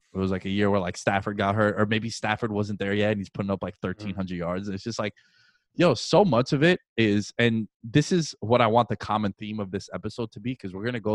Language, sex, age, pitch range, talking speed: English, male, 20-39, 95-120 Hz, 285 wpm